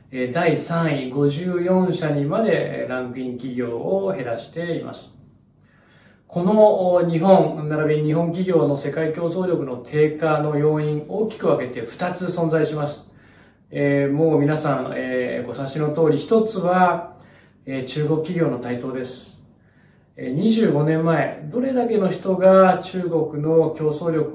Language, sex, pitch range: Japanese, male, 130-170 Hz